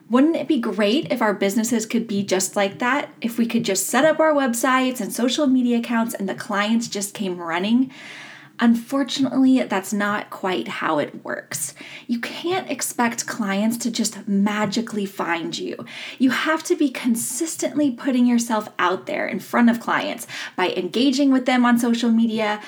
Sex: female